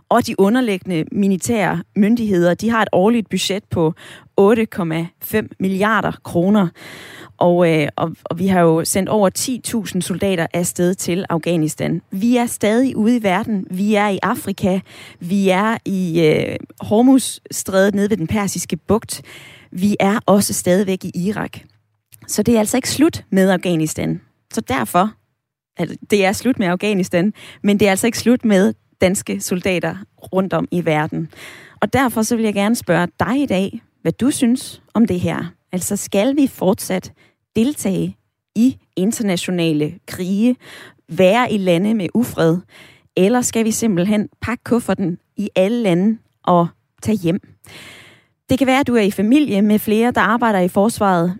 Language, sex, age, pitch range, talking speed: Danish, female, 20-39, 175-225 Hz, 160 wpm